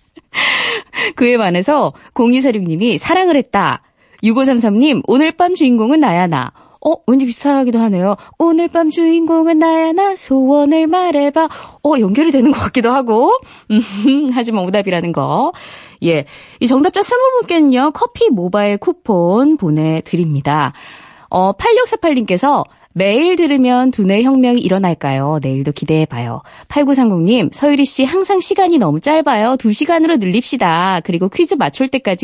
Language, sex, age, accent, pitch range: Korean, female, 20-39, native, 190-310 Hz